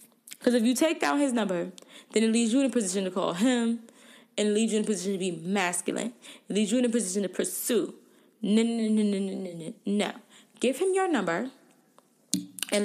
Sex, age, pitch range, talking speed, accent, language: female, 20-39, 205-255 Hz, 220 wpm, American, English